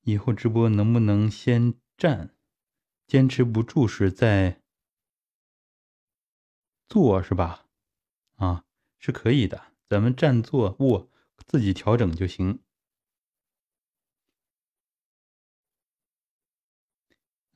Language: Chinese